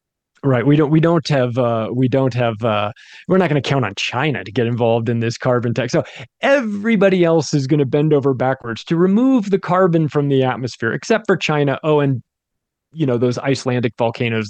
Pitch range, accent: 125-165 Hz, American